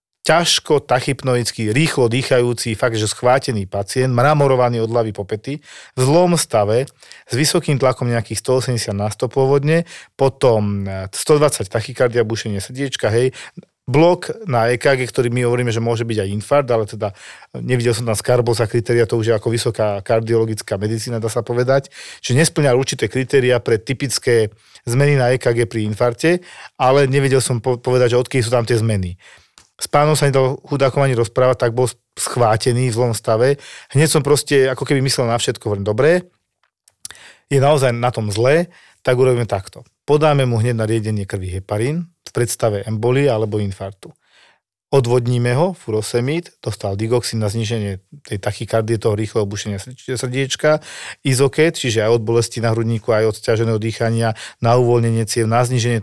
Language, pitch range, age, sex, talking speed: Slovak, 110-135 Hz, 40-59, male, 160 wpm